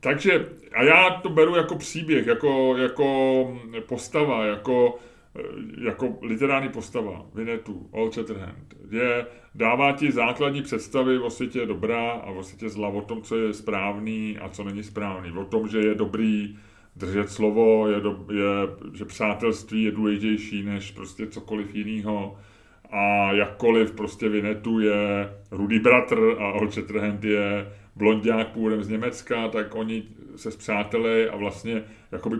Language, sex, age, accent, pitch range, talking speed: Czech, male, 30-49, native, 100-110 Hz, 145 wpm